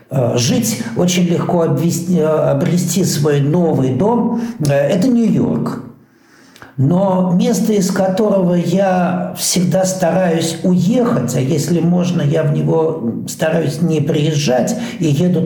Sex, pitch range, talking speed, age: male, 145-185 Hz, 110 wpm, 60-79